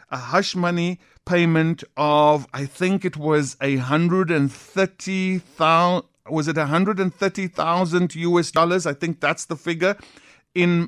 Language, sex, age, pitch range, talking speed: English, male, 50-69, 165-195 Hz, 120 wpm